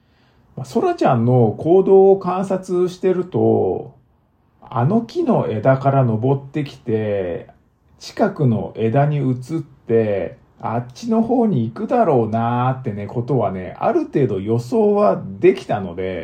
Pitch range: 110-155 Hz